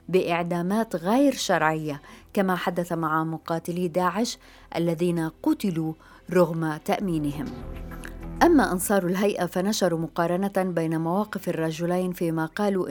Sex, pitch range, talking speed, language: female, 165-195 Hz, 100 wpm, Arabic